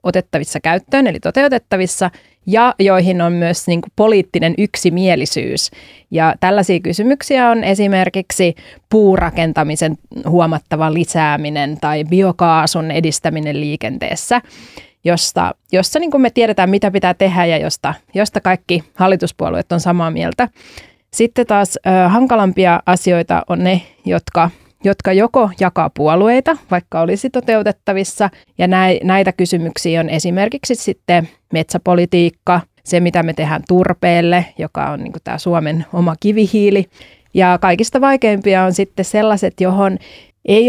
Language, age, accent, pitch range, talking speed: Finnish, 30-49, native, 170-200 Hz, 120 wpm